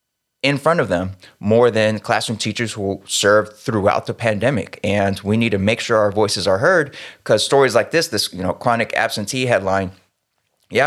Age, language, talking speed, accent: 20-39, English, 190 wpm, American